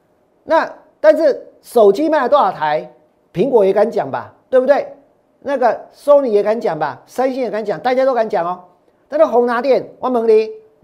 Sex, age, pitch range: male, 40-59, 205-290 Hz